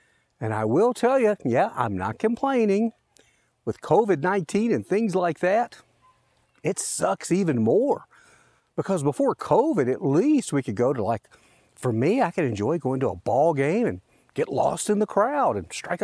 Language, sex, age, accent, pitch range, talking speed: English, male, 50-69, American, 130-210 Hz, 175 wpm